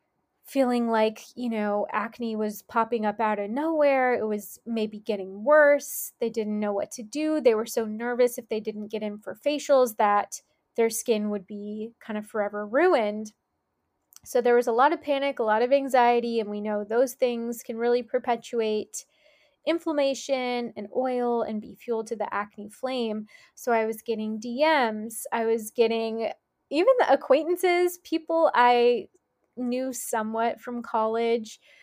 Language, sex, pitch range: English, female, 215-260 Hz